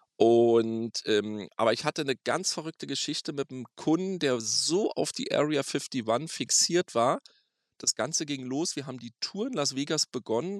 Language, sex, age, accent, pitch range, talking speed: German, male, 40-59, German, 115-150 Hz, 180 wpm